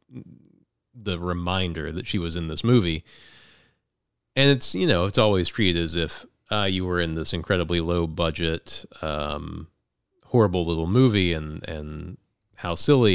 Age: 30-49